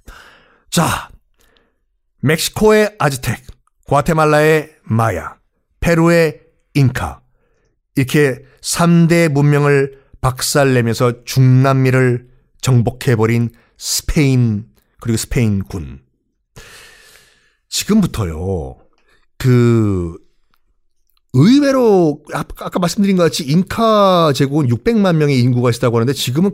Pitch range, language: 120-175 Hz, Korean